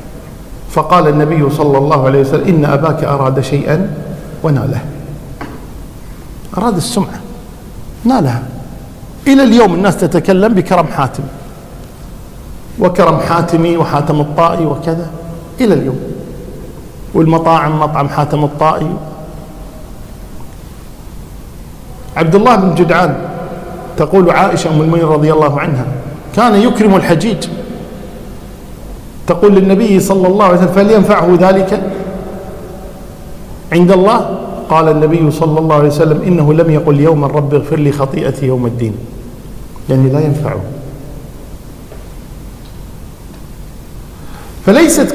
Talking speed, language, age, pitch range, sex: 100 wpm, Arabic, 50-69, 150-205 Hz, male